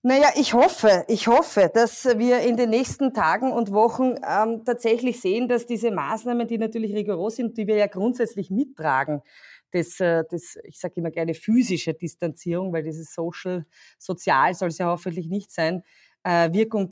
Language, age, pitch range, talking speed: German, 30-49, 180-225 Hz, 165 wpm